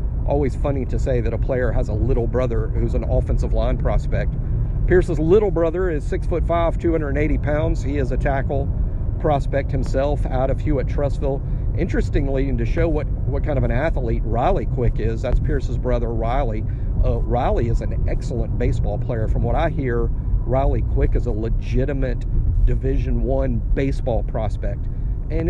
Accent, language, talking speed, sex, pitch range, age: American, English, 170 wpm, male, 115-135 Hz, 50-69